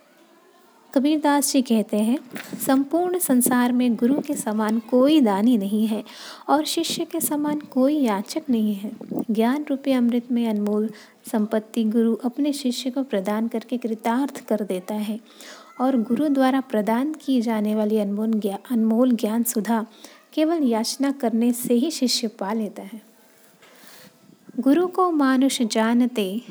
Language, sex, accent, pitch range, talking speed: Hindi, female, native, 220-270 Hz, 140 wpm